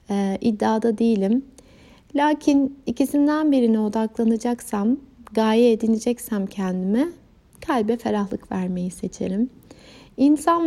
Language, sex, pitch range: Turkish, female, 225-295 Hz